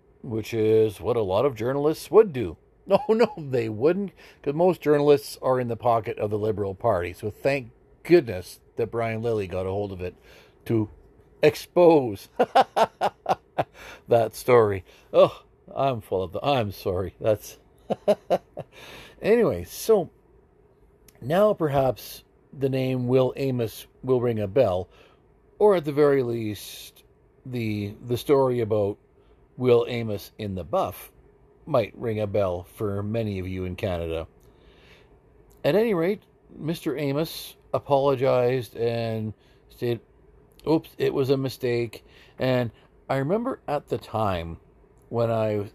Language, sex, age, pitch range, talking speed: English, male, 50-69, 110-140 Hz, 135 wpm